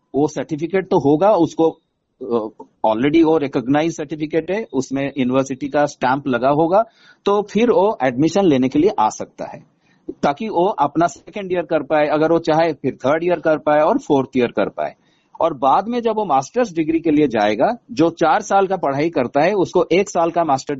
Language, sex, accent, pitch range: Hindi, male, native, 140-185 Hz